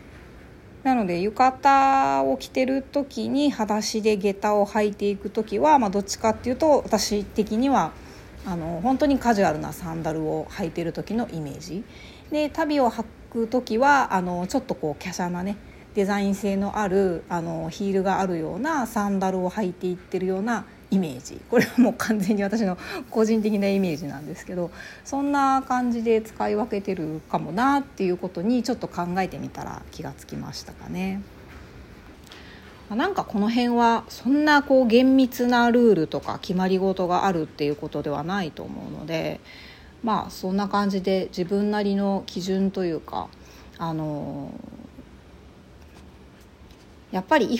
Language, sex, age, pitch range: Japanese, female, 40-59, 170-230 Hz